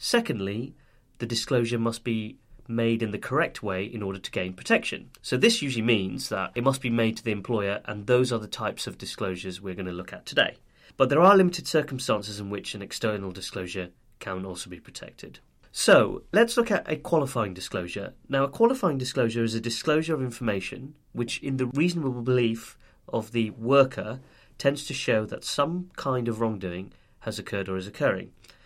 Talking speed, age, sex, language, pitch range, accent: 190 wpm, 30-49, male, English, 105-135 Hz, British